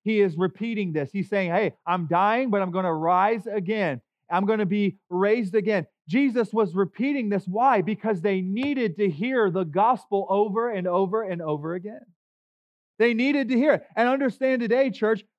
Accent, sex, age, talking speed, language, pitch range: American, male, 30-49, 185 wpm, English, 185-225 Hz